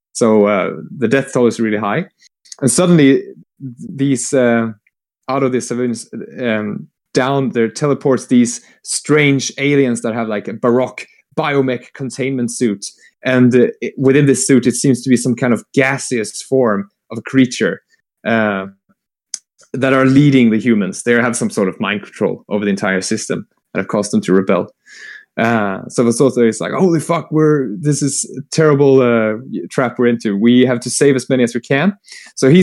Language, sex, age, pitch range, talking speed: English, male, 20-39, 115-140 Hz, 180 wpm